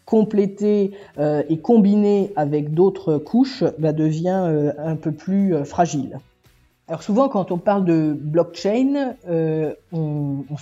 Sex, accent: female, French